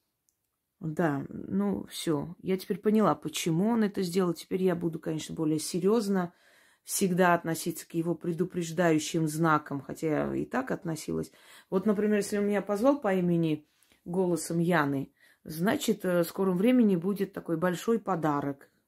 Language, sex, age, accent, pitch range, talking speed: Russian, female, 30-49, native, 165-200 Hz, 145 wpm